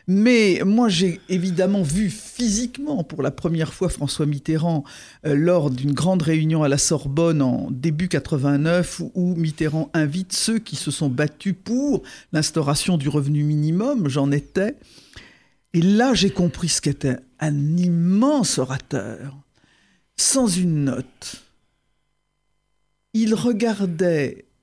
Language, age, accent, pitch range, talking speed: French, 50-69, French, 150-205 Hz, 125 wpm